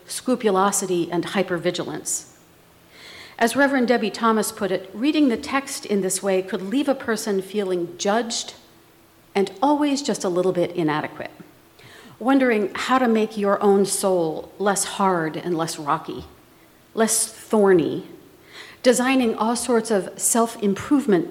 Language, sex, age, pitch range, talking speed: English, female, 50-69, 180-235 Hz, 130 wpm